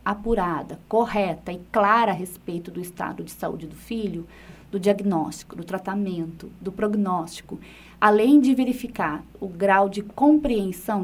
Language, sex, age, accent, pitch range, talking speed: Portuguese, female, 20-39, Brazilian, 185-230 Hz, 135 wpm